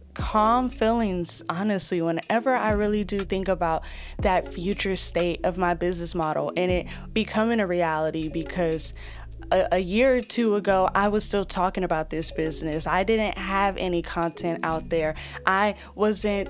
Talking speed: 160 wpm